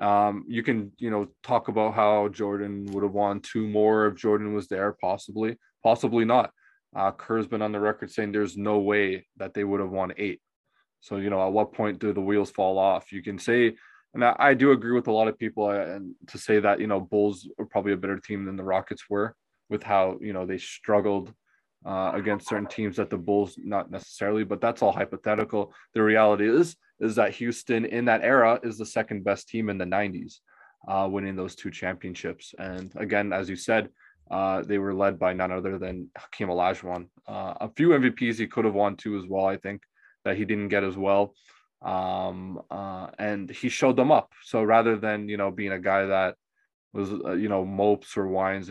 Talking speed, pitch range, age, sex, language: 215 wpm, 95-110 Hz, 20-39, male, English